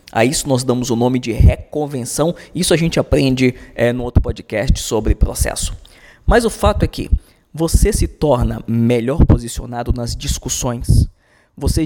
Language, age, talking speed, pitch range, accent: Portuguese, 20-39, 155 wpm, 115-150 Hz, Brazilian